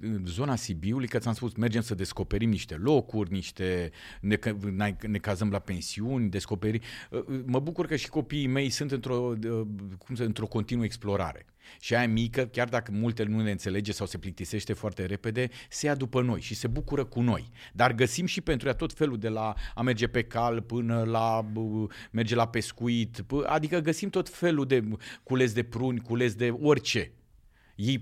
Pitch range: 95-125 Hz